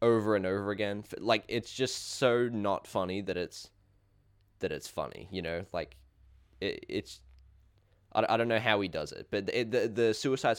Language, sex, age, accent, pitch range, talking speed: English, male, 10-29, Australian, 90-110 Hz, 185 wpm